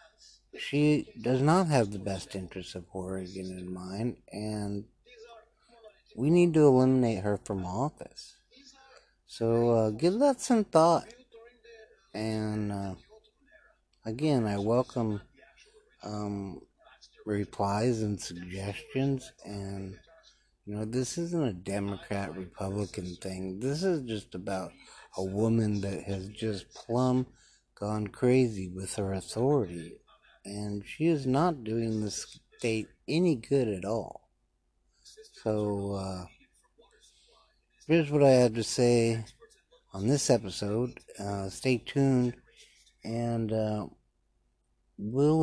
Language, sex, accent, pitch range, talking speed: English, male, American, 100-130 Hz, 115 wpm